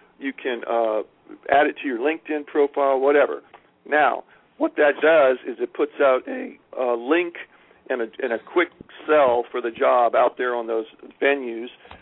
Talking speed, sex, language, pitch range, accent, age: 175 wpm, male, English, 120-145 Hz, American, 50-69